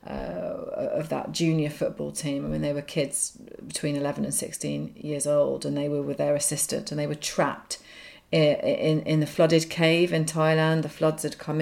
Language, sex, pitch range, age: English, female, 150-165 Hz, 30-49